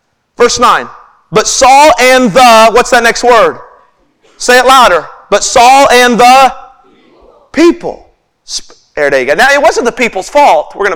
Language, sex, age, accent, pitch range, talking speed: English, male, 40-59, American, 245-325 Hz, 150 wpm